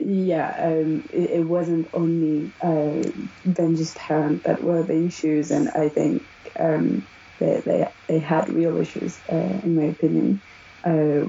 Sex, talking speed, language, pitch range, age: female, 150 wpm, English, 155-170 Hz, 20-39